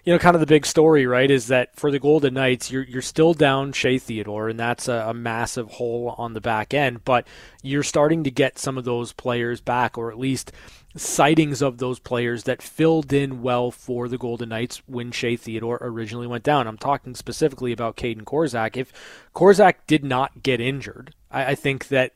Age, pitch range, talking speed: 20-39, 120-140 Hz, 205 wpm